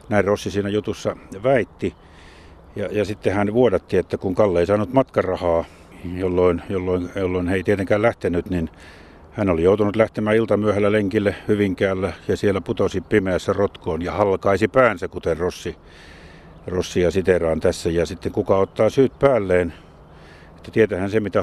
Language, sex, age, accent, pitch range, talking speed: Finnish, male, 50-69, native, 85-105 Hz, 150 wpm